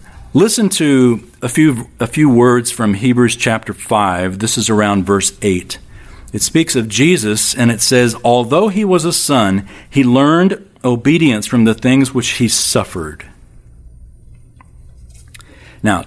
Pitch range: 95-135 Hz